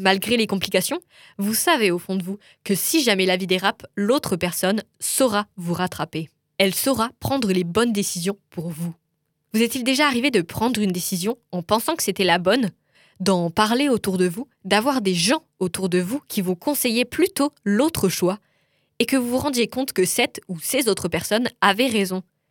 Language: French